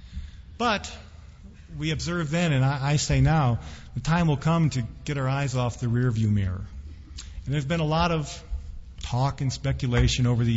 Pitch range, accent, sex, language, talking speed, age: 100-140 Hz, American, male, English, 175 wpm, 50-69